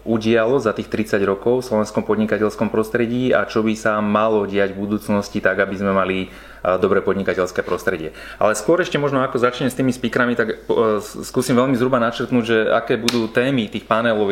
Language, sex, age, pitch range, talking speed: Slovak, male, 30-49, 100-115 Hz, 180 wpm